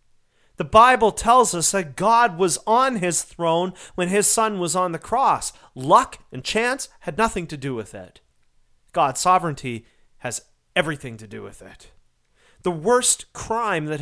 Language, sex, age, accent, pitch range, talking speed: English, male, 40-59, American, 120-180 Hz, 165 wpm